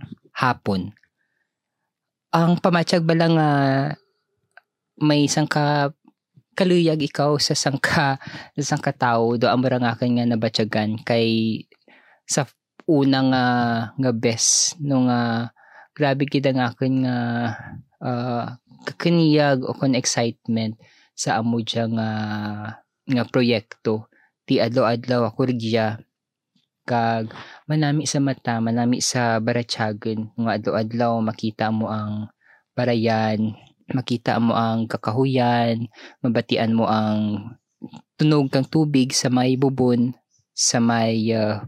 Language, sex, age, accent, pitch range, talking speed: Filipino, female, 20-39, native, 115-140 Hz, 105 wpm